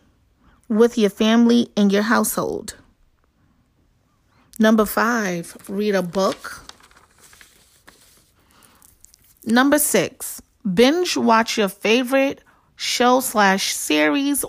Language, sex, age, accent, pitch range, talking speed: English, female, 30-49, American, 205-245 Hz, 85 wpm